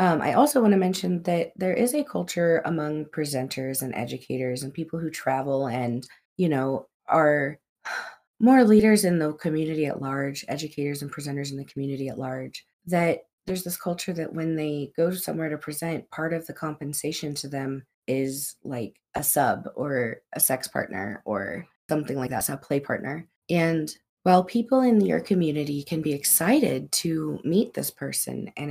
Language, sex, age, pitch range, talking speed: English, female, 20-39, 145-190 Hz, 180 wpm